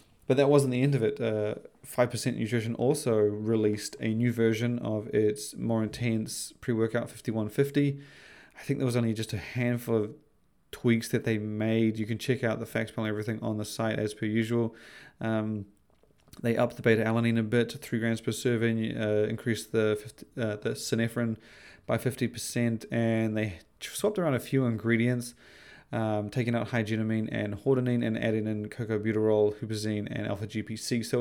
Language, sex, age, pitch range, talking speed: English, male, 20-39, 110-120 Hz, 175 wpm